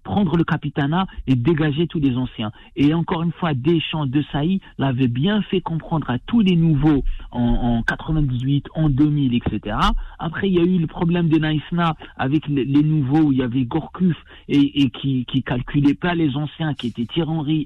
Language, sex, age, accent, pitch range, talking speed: French, male, 50-69, French, 130-170 Hz, 195 wpm